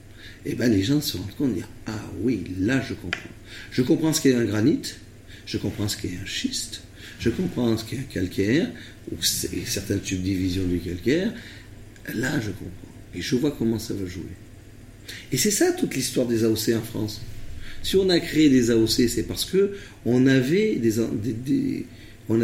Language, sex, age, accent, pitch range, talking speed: French, male, 50-69, French, 105-135 Hz, 190 wpm